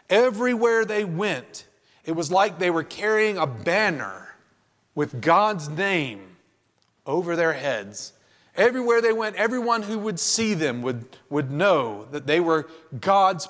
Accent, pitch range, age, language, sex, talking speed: American, 155-220 Hz, 40-59, English, male, 140 wpm